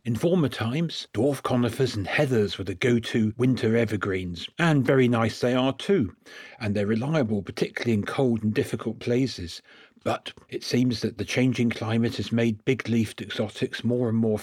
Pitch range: 110-135 Hz